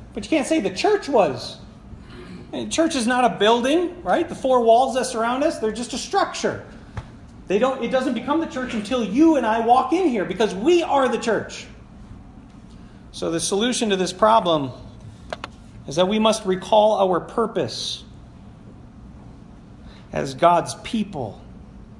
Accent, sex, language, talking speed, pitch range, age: American, male, English, 160 wpm, 150-225 Hz, 40-59